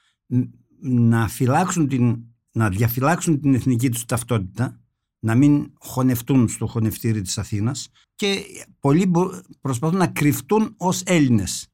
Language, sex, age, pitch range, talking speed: Greek, male, 60-79, 115-145 Hz, 110 wpm